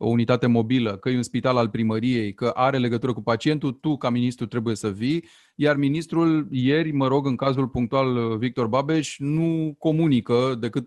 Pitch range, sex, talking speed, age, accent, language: 120-145 Hz, male, 180 wpm, 30-49, native, Romanian